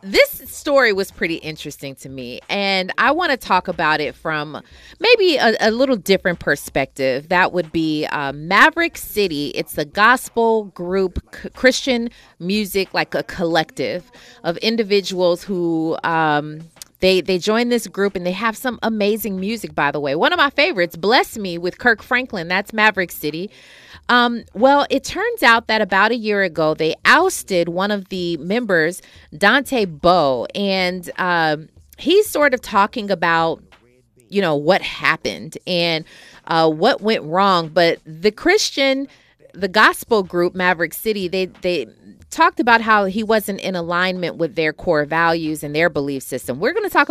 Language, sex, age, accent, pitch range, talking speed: English, female, 30-49, American, 165-230 Hz, 165 wpm